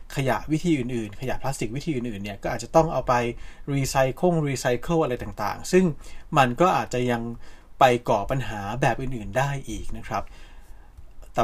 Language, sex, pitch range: Thai, male, 115-150 Hz